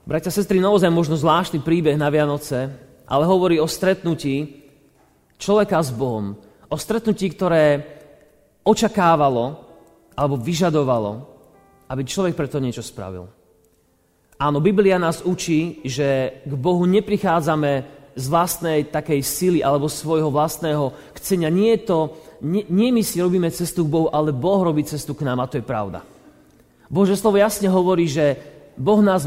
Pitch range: 140-180 Hz